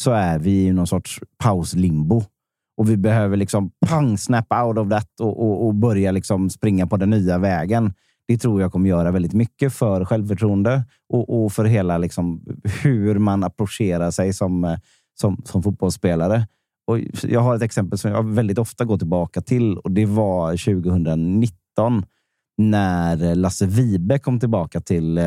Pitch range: 90-110 Hz